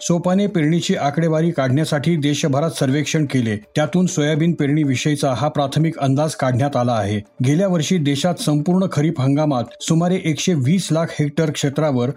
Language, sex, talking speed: Marathi, male, 125 wpm